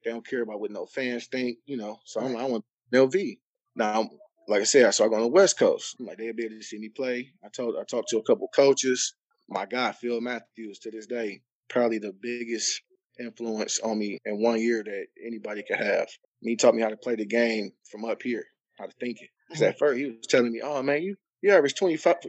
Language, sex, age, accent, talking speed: English, male, 20-39, American, 245 wpm